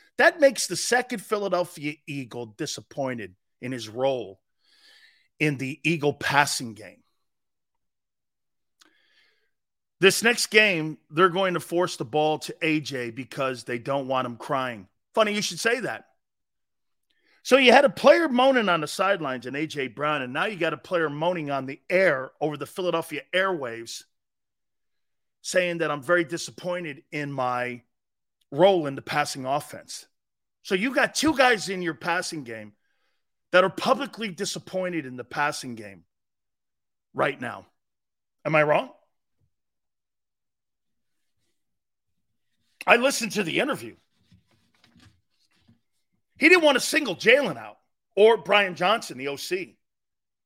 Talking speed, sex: 135 wpm, male